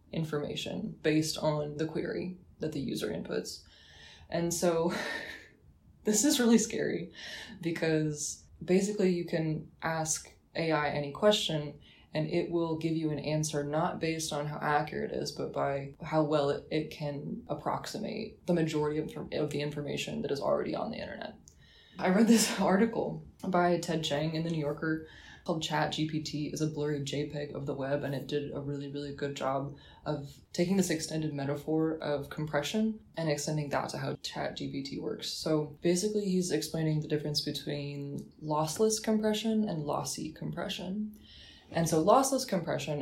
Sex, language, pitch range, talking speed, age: female, English, 145-170 Hz, 160 wpm, 20-39